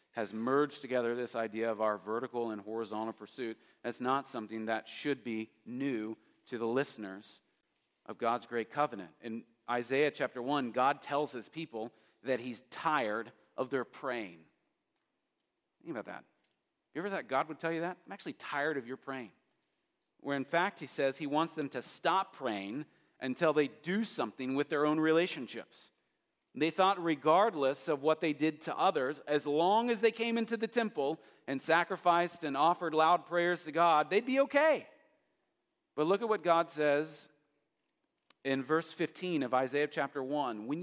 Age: 40-59